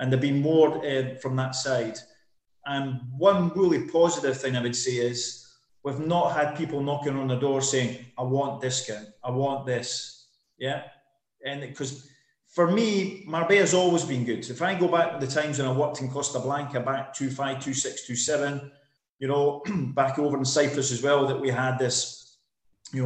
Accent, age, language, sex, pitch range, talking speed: British, 30-49, English, male, 130-150 Hz, 185 wpm